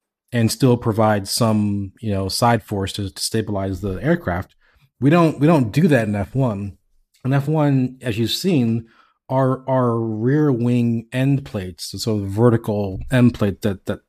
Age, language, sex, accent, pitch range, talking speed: 30-49, Greek, male, American, 105-130 Hz, 165 wpm